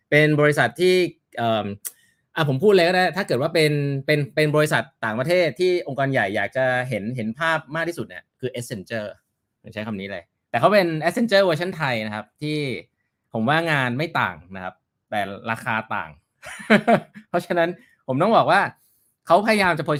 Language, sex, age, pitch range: Thai, male, 20-39, 115-165 Hz